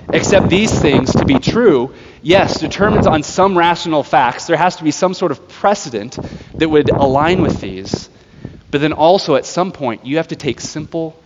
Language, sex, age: English, male, 30-49